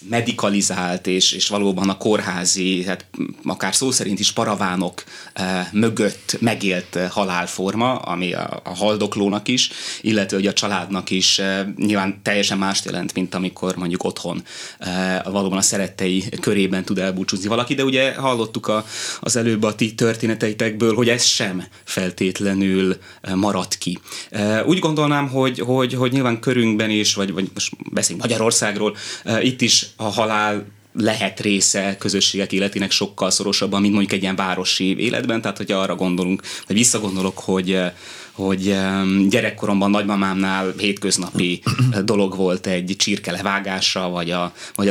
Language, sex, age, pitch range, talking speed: Hungarian, male, 20-39, 95-115 Hz, 145 wpm